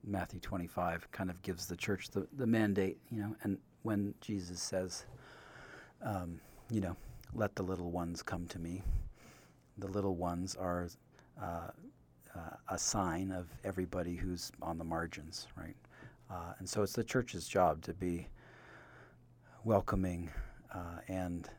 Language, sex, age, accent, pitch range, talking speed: English, male, 50-69, American, 90-110 Hz, 145 wpm